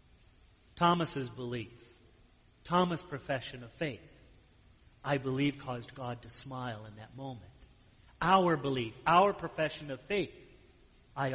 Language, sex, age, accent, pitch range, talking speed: English, male, 40-59, American, 125-185 Hz, 115 wpm